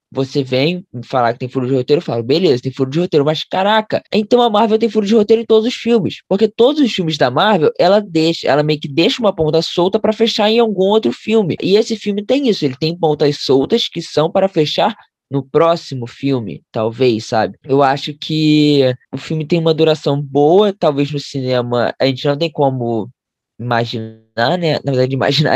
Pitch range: 140-200 Hz